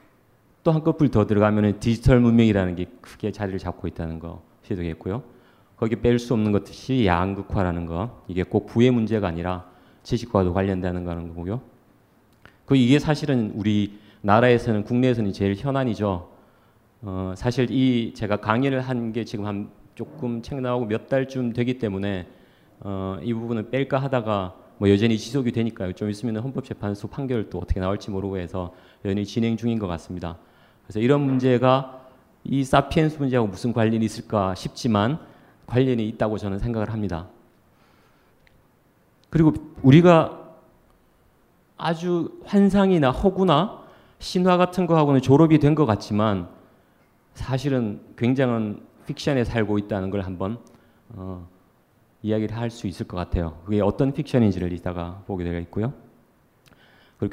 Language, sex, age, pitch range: Korean, male, 40-59, 100-130 Hz